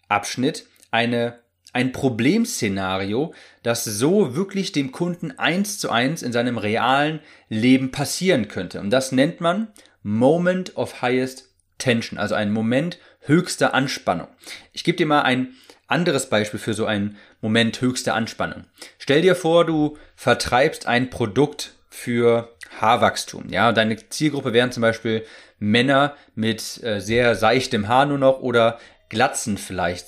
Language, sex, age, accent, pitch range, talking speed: German, male, 30-49, German, 110-145 Hz, 140 wpm